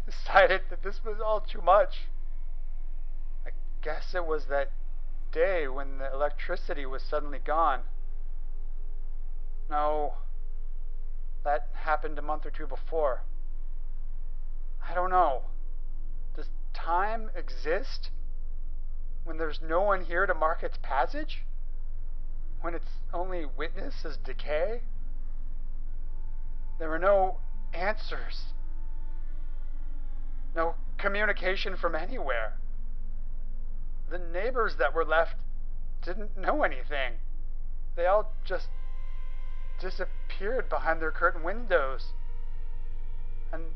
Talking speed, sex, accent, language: 100 wpm, male, American, English